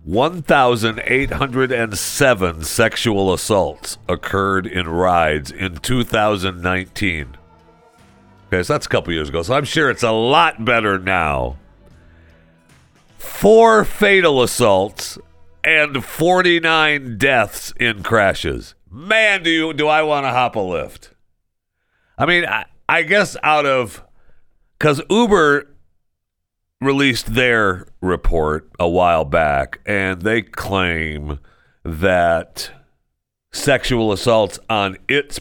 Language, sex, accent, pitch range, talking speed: English, male, American, 85-120 Hz, 120 wpm